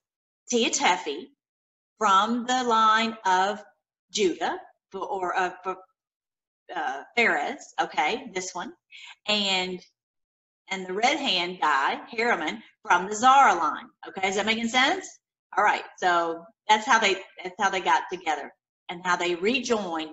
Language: English